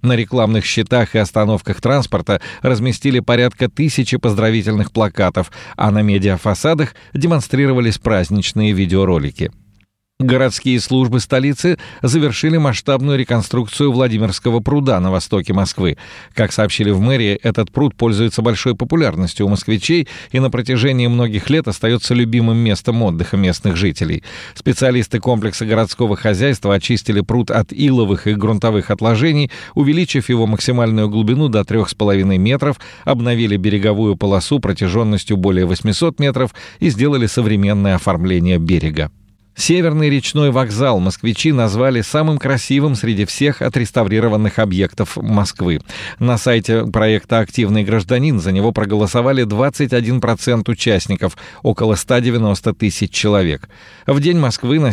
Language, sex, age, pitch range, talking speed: Russian, male, 40-59, 105-130 Hz, 120 wpm